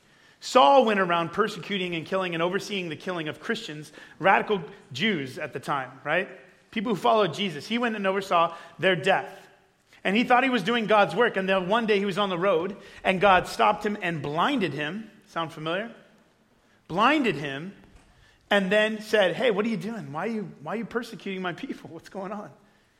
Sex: male